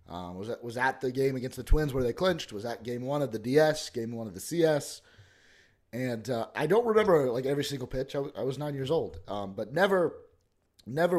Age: 30-49